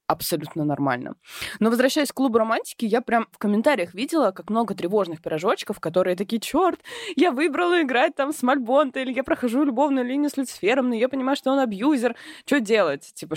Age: 20-39